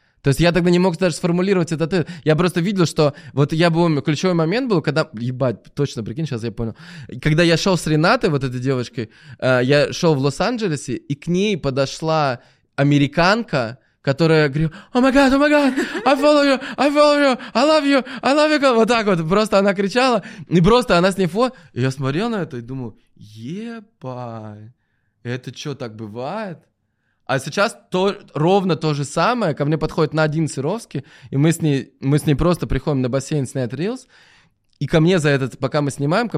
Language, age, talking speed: Russian, 20-39, 200 wpm